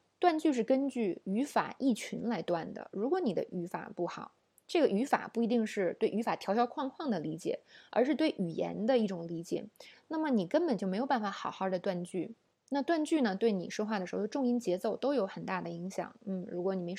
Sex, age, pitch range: female, 20-39, 185-245 Hz